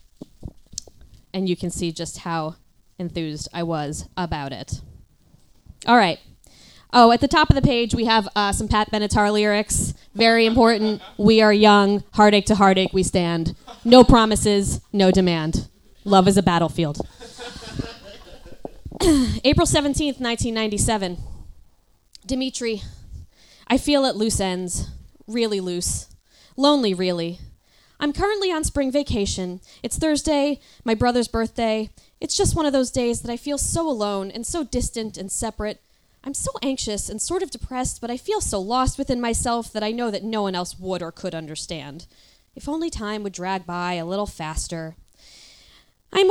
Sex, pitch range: female, 190-260 Hz